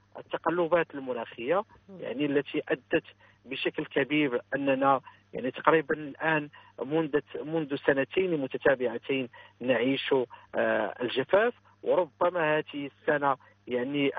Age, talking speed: 50-69, 90 wpm